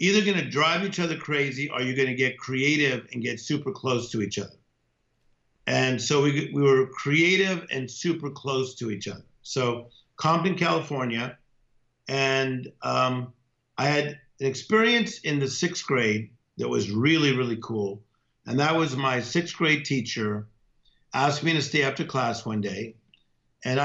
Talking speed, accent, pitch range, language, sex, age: 165 wpm, American, 115-150 Hz, English, male, 50-69